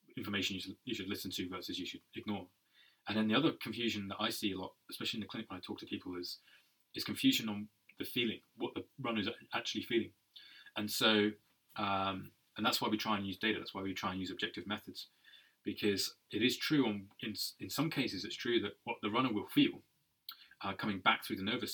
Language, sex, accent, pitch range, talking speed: English, male, British, 95-115 Hz, 225 wpm